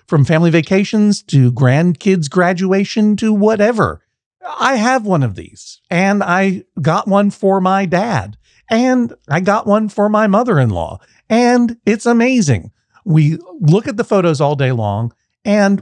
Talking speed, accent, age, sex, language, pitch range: 150 wpm, American, 50-69, male, English, 130-195 Hz